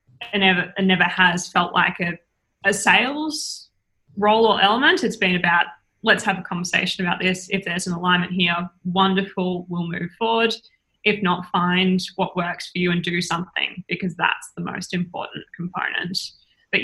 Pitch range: 180-200 Hz